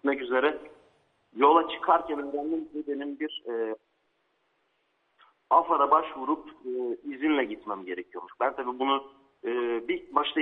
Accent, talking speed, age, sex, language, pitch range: native, 120 wpm, 50-69, male, Turkish, 135-160 Hz